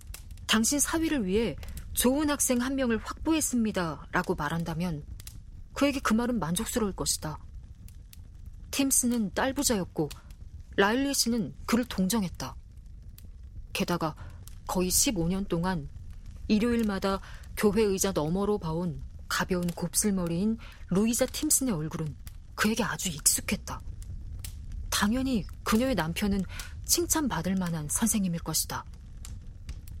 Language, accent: Korean, native